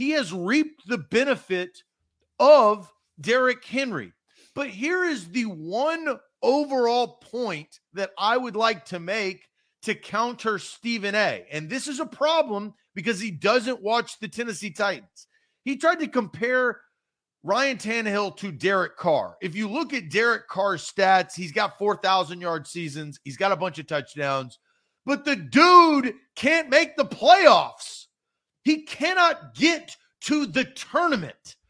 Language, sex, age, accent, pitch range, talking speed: English, male, 40-59, American, 195-295 Hz, 145 wpm